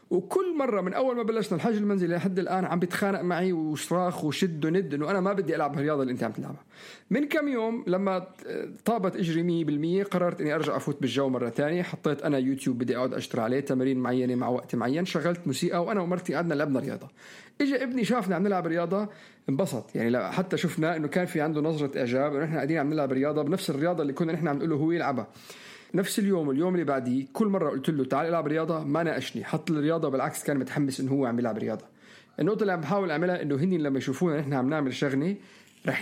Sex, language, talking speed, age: male, Arabic, 215 wpm, 50-69